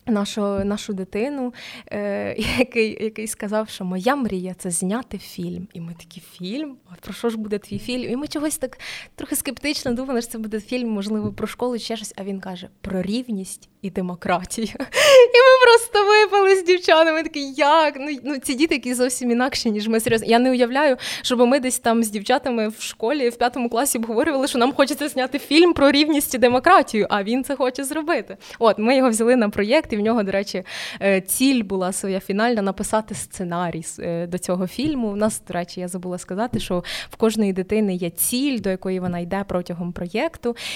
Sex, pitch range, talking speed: female, 195-255 Hz, 195 wpm